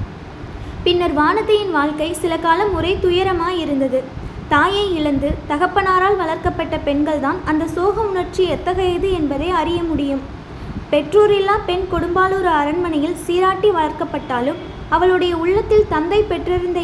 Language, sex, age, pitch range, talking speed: Tamil, female, 20-39, 310-375 Hz, 110 wpm